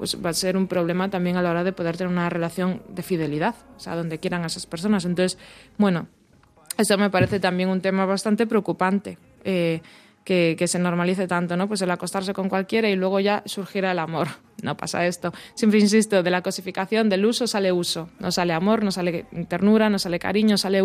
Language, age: Spanish, 20-39